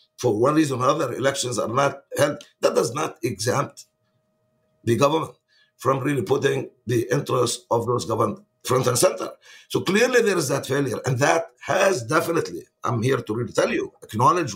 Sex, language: male, English